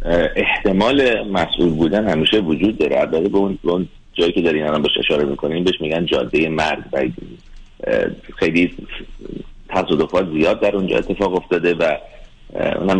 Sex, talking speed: male, 140 wpm